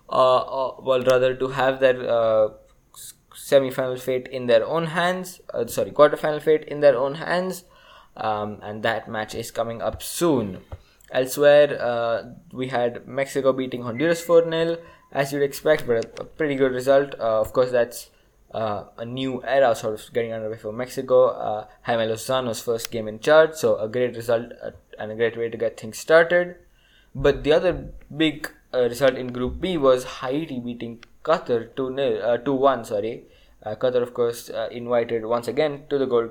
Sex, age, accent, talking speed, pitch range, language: male, 20-39, Indian, 180 wpm, 115-145 Hz, English